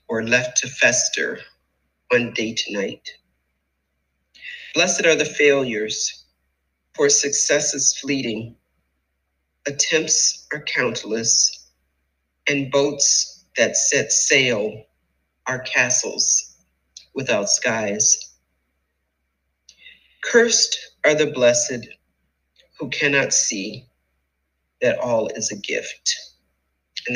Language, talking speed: English, 90 wpm